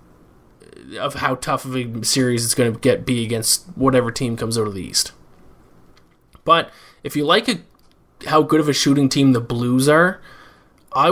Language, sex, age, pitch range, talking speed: English, male, 20-39, 125-140 Hz, 185 wpm